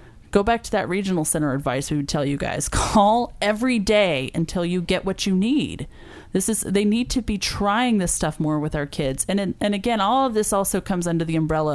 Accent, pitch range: American, 155-215 Hz